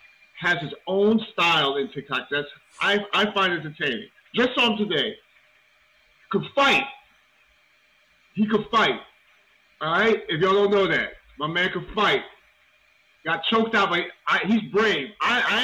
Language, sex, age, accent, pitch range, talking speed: English, male, 30-49, American, 155-205 Hz, 155 wpm